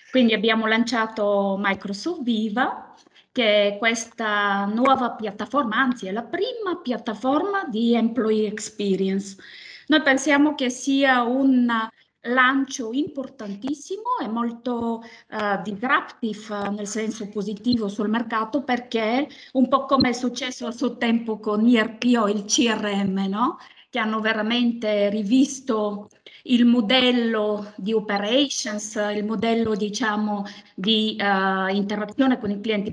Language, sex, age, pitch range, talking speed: Italian, female, 20-39, 210-260 Hz, 120 wpm